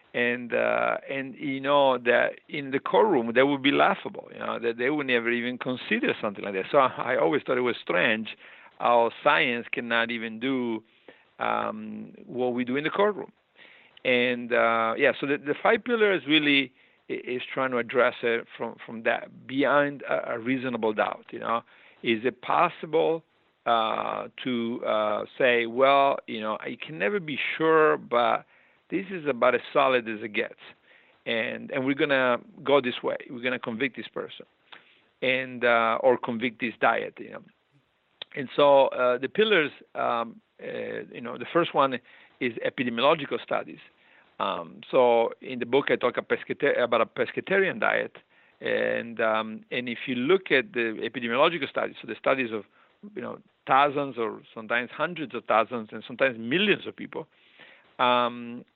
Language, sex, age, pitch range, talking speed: English, male, 50-69, 120-145 Hz, 170 wpm